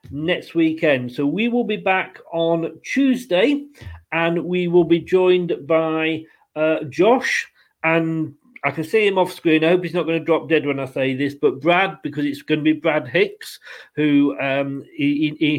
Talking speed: 195 wpm